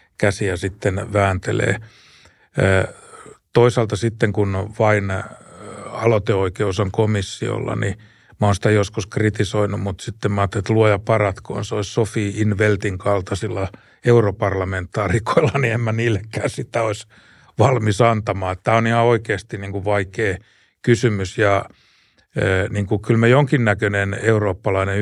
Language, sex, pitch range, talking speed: Finnish, male, 95-115 Hz, 115 wpm